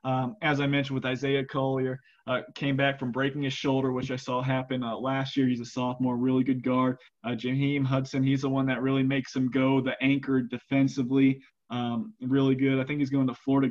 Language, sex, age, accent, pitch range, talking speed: English, male, 20-39, American, 130-150 Hz, 220 wpm